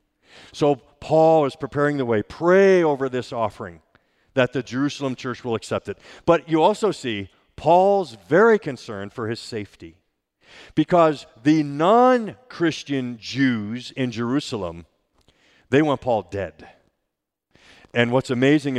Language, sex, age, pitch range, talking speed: English, male, 50-69, 115-150 Hz, 130 wpm